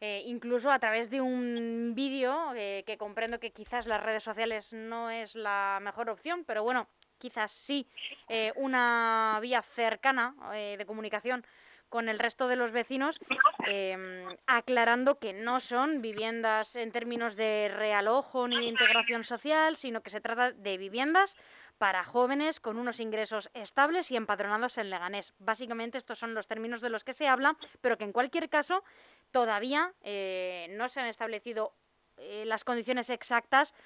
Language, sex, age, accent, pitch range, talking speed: Spanish, female, 20-39, Spanish, 215-255 Hz, 160 wpm